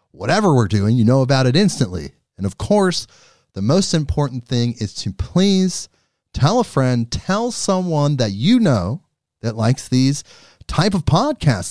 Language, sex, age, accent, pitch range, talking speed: English, male, 40-59, American, 120-180 Hz, 165 wpm